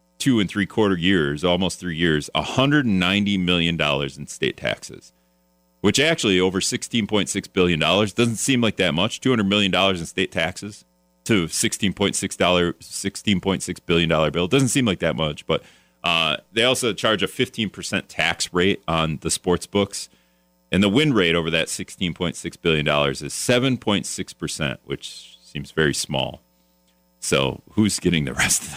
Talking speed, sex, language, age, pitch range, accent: 150 wpm, male, English, 40-59, 70-100 Hz, American